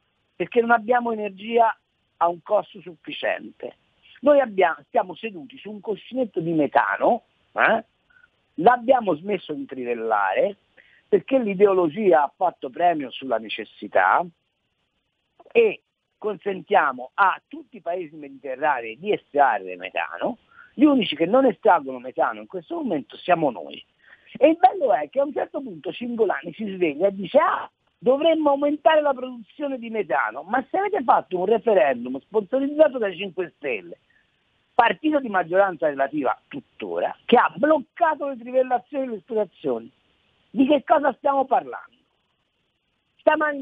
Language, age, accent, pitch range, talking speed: Italian, 50-69, native, 185-275 Hz, 140 wpm